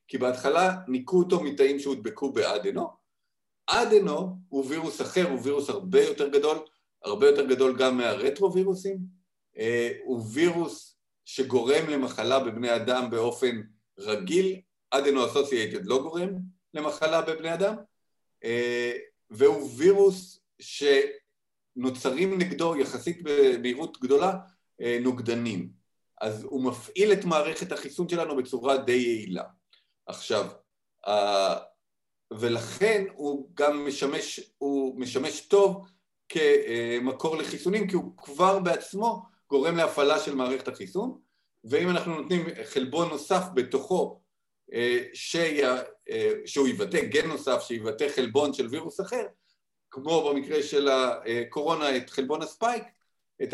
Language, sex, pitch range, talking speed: Hebrew, male, 130-195 Hz, 115 wpm